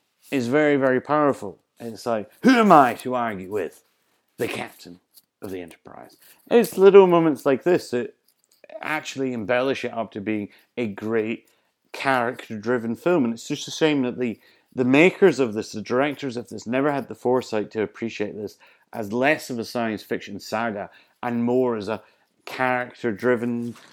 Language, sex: English, male